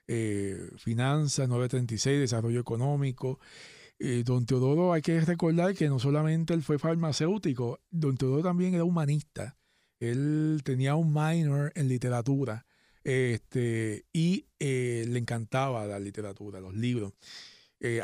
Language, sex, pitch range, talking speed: Spanish, male, 120-155 Hz, 125 wpm